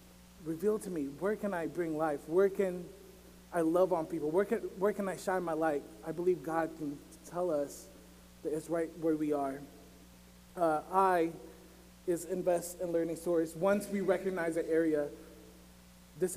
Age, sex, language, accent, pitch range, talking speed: 20-39, male, English, American, 145-180 Hz, 170 wpm